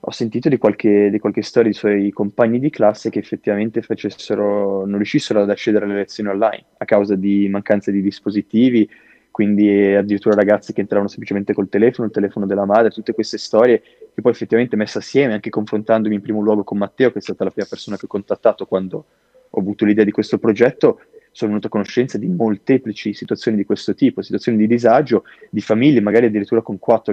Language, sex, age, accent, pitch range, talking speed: Italian, male, 20-39, native, 100-115 Hz, 200 wpm